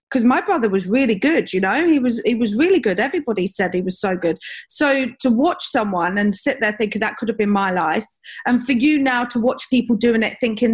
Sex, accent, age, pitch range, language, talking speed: female, British, 40-59, 210-270 Hz, English, 245 wpm